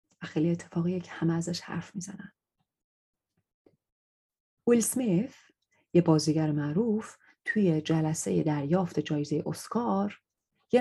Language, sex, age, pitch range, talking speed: Persian, female, 30-49, 165-225 Hz, 105 wpm